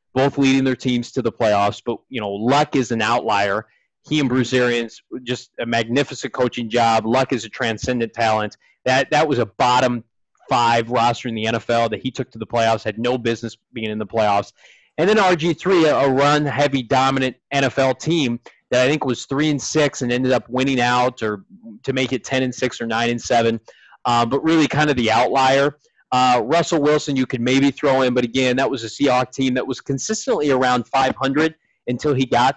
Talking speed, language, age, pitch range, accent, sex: 210 wpm, English, 30-49, 120-145 Hz, American, male